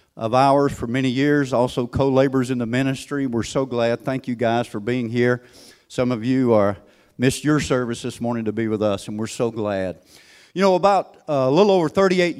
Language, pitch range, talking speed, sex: English, 115-145 Hz, 215 wpm, male